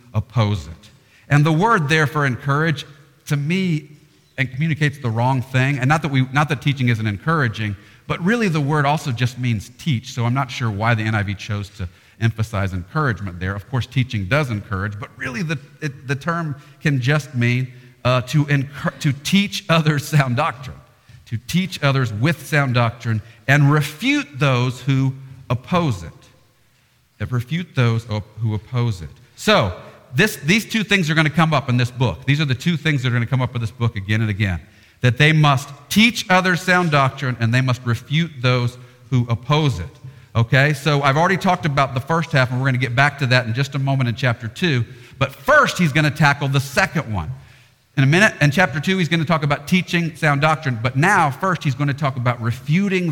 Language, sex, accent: English, male, American